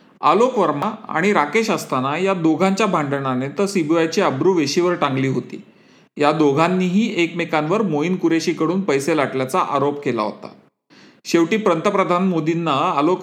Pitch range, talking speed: 140-190 Hz, 75 wpm